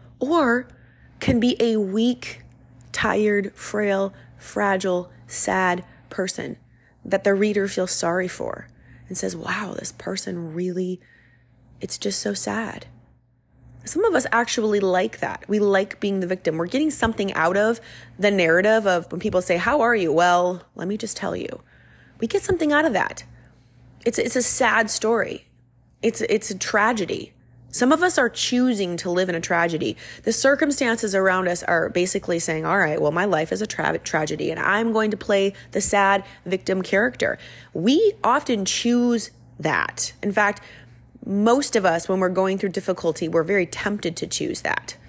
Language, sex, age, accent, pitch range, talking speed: English, female, 20-39, American, 175-235 Hz, 170 wpm